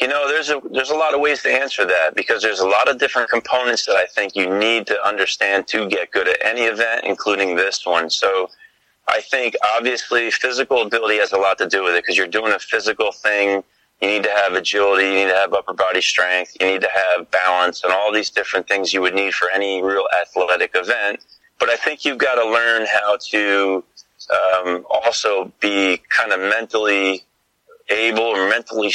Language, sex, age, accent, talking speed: English, male, 30-49, American, 210 wpm